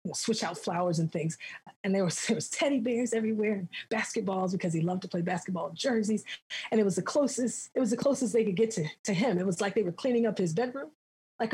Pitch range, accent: 195-255 Hz, American